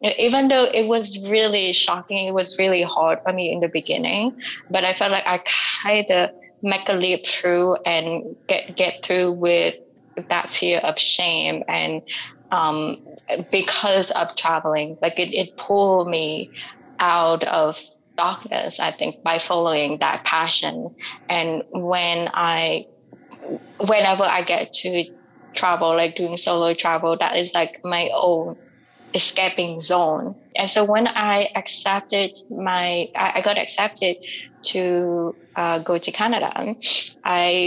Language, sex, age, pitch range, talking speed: English, female, 20-39, 165-195 Hz, 140 wpm